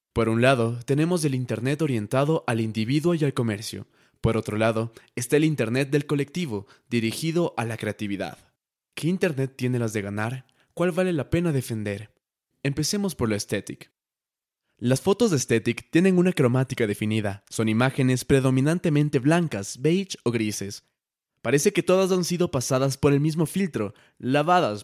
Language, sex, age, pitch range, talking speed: Spanish, male, 20-39, 115-155 Hz, 160 wpm